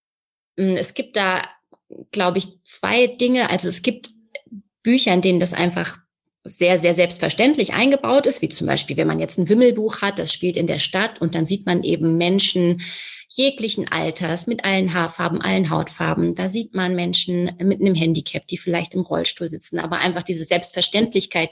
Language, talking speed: German, 175 wpm